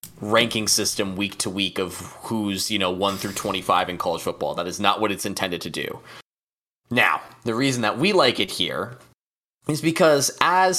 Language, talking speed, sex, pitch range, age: English, 190 wpm, male, 105-145 Hz, 20-39